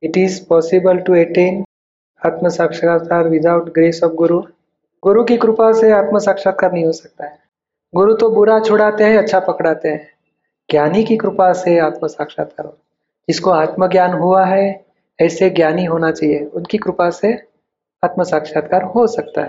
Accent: native